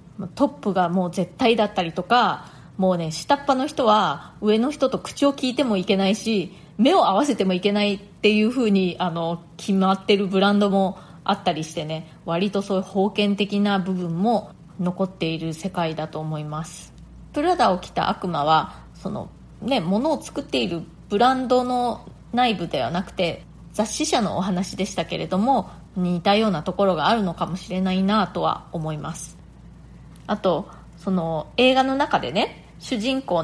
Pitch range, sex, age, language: 170-225 Hz, female, 20-39, Japanese